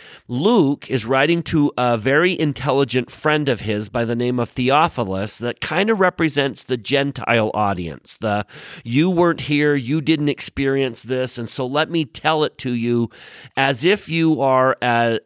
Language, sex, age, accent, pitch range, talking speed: English, male, 40-59, American, 115-145 Hz, 170 wpm